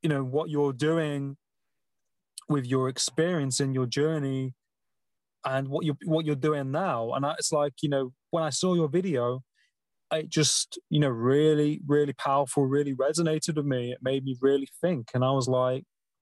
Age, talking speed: 20-39, 175 wpm